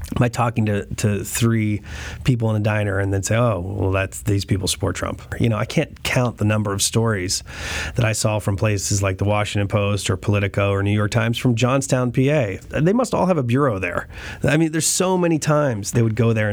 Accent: American